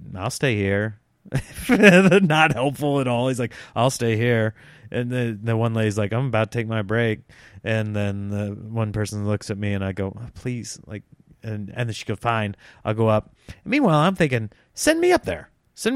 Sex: male